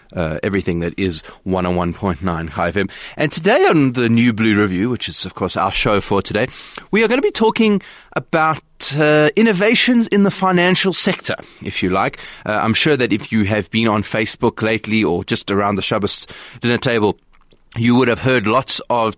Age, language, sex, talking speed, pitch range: 30-49, English, male, 200 wpm, 105-165 Hz